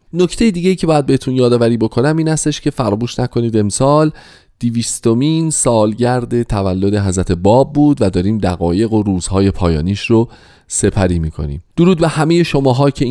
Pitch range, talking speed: 100-140 Hz, 150 wpm